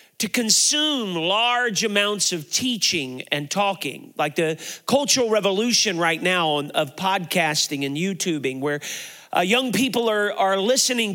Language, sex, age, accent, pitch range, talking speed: English, male, 40-59, American, 175-235 Hz, 135 wpm